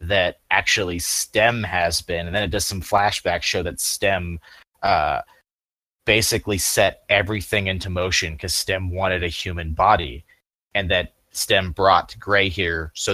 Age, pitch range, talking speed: 30-49, 90-105 Hz, 150 wpm